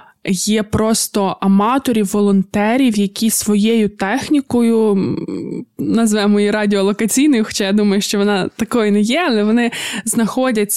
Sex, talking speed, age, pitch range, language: female, 115 wpm, 20-39, 205-235 Hz, Ukrainian